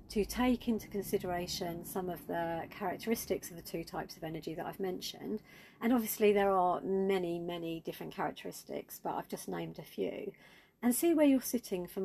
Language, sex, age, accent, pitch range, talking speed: English, female, 40-59, British, 175-215 Hz, 185 wpm